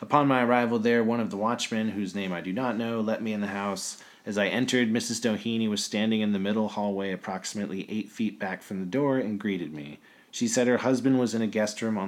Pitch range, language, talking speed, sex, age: 95-120 Hz, English, 250 wpm, male, 30-49